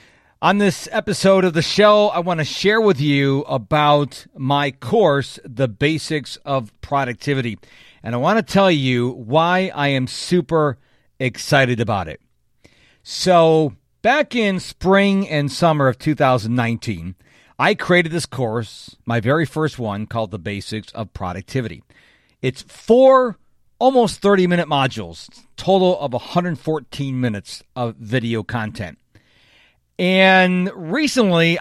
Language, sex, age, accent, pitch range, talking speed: English, male, 50-69, American, 125-175 Hz, 125 wpm